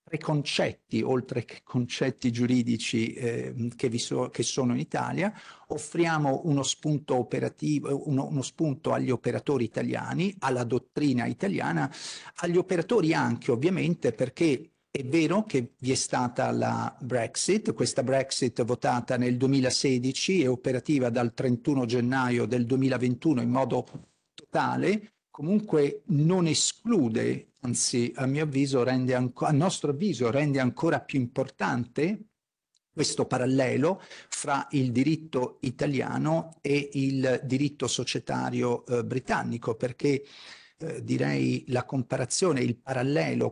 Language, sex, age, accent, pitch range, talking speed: Italian, male, 50-69, native, 125-150 Hz, 125 wpm